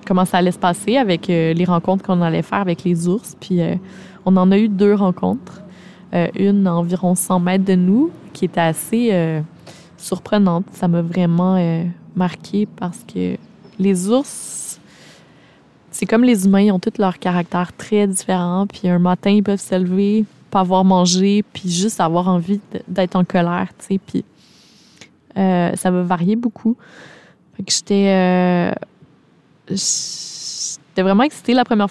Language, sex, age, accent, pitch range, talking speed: French, female, 20-39, Canadian, 175-200 Hz, 170 wpm